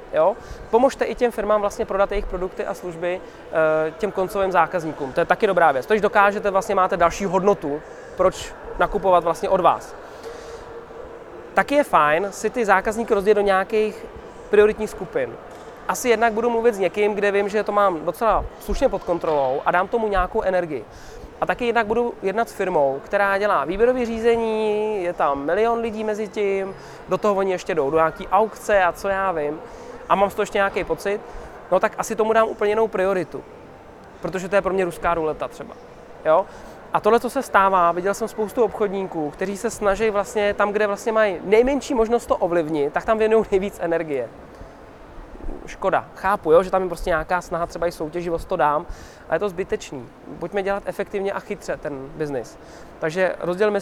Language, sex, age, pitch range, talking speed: Czech, male, 20-39, 175-215 Hz, 185 wpm